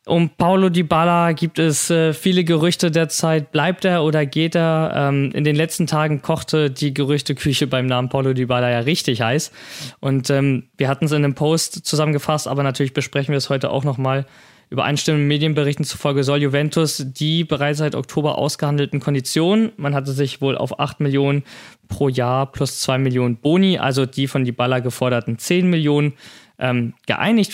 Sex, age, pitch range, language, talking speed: male, 20-39, 140-165 Hz, German, 165 wpm